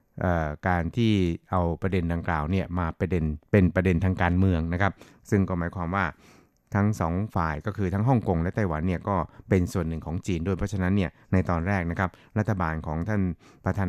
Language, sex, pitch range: Thai, male, 85-100 Hz